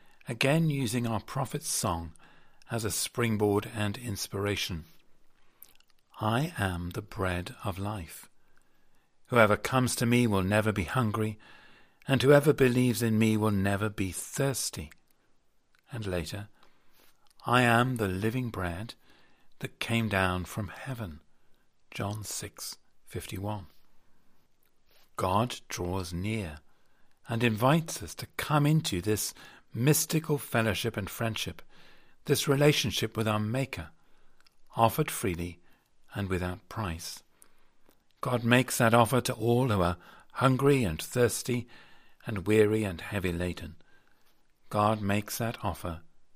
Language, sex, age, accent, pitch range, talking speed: English, male, 40-59, British, 95-125 Hz, 120 wpm